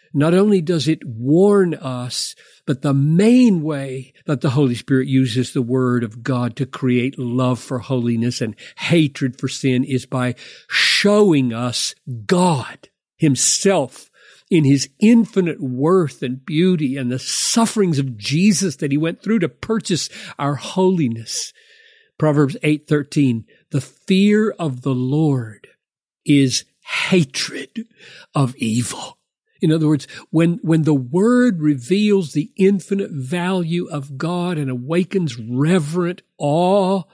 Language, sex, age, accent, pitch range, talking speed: English, male, 50-69, American, 130-180 Hz, 130 wpm